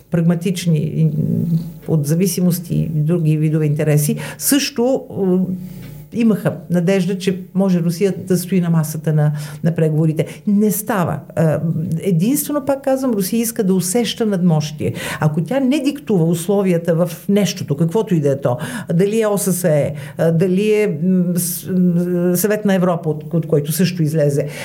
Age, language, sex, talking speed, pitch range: 50-69, Bulgarian, female, 130 wpm, 160-205 Hz